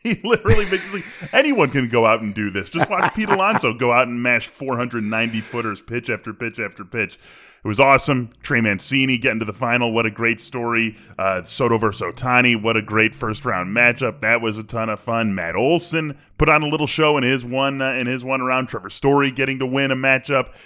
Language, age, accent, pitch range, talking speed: English, 10-29, American, 110-135 Hz, 220 wpm